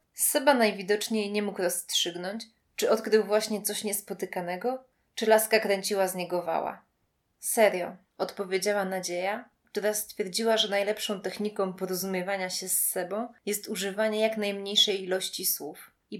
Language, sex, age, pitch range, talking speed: Polish, female, 20-39, 185-220 Hz, 130 wpm